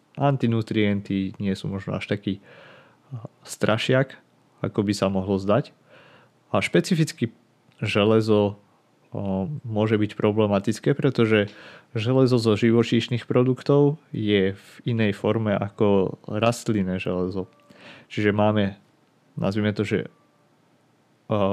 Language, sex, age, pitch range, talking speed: Slovak, male, 30-49, 100-125 Hz, 105 wpm